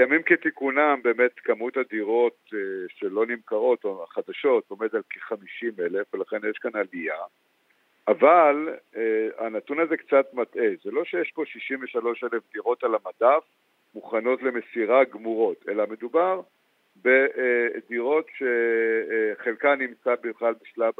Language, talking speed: Hebrew, 115 wpm